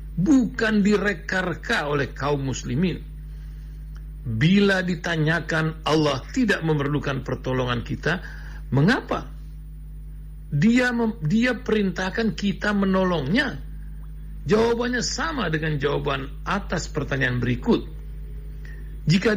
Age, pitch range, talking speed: 60-79, 145-195 Hz, 85 wpm